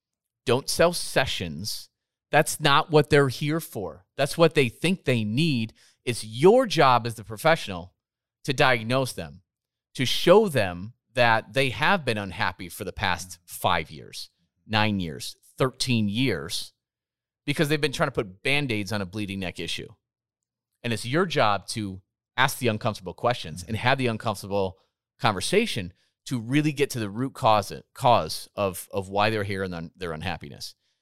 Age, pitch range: 30-49, 105-145 Hz